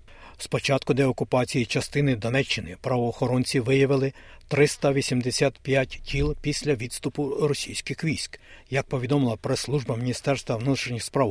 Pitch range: 120-145 Hz